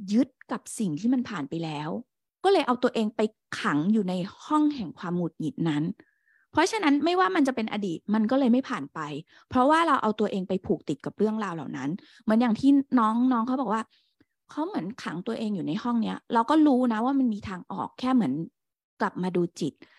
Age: 20-39